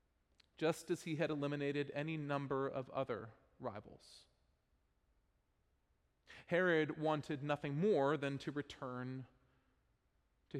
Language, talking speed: English, 100 wpm